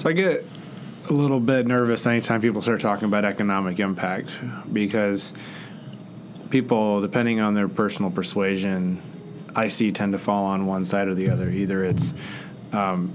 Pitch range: 95-110 Hz